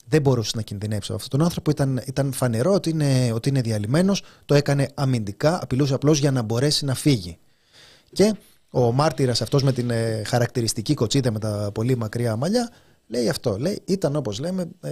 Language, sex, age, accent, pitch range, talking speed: Greek, male, 30-49, native, 130-170 Hz, 170 wpm